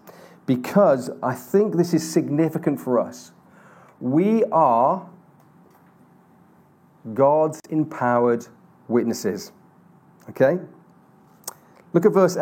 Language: English